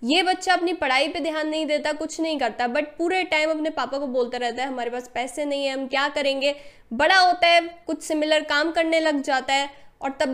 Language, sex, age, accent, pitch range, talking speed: Hindi, female, 10-29, native, 260-335 Hz, 230 wpm